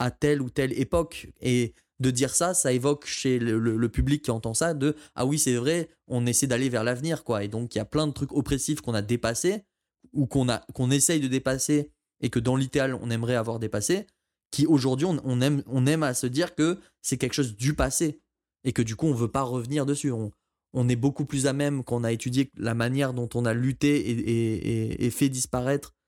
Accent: French